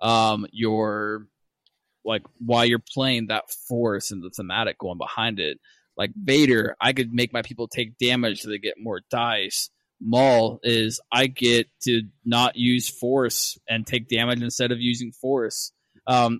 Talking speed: 160 wpm